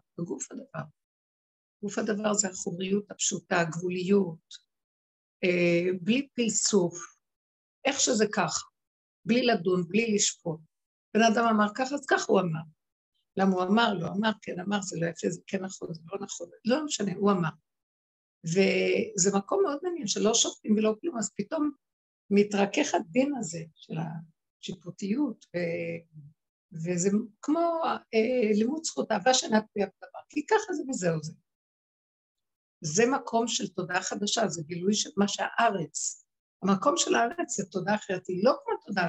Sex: female